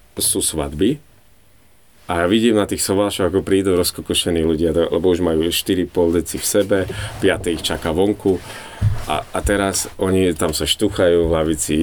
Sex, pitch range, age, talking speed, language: male, 85-95 Hz, 30-49, 155 wpm, Slovak